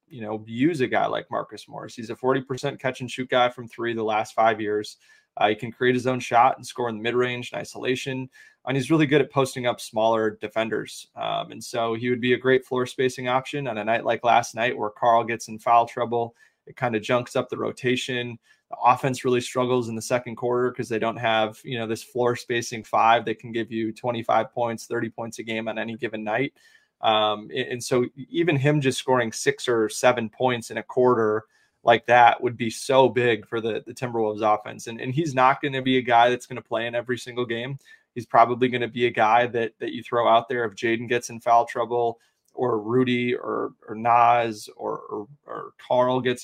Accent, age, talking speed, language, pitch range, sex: American, 20-39, 230 wpm, English, 115-130 Hz, male